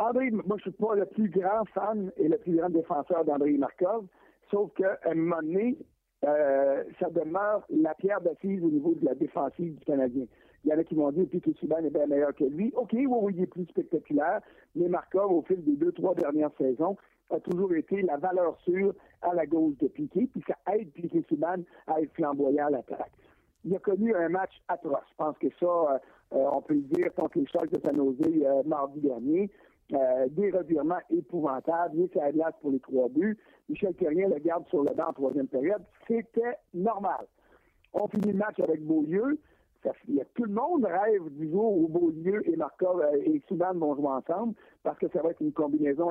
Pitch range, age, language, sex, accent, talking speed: 155-215 Hz, 60-79, French, male, French, 215 wpm